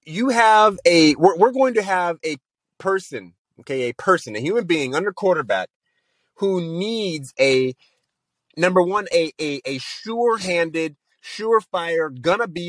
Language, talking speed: English, 155 wpm